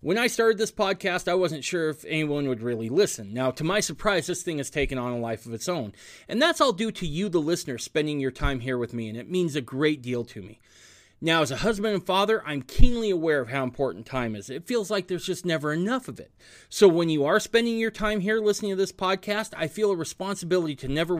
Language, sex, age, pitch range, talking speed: English, male, 30-49, 130-195 Hz, 255 wpm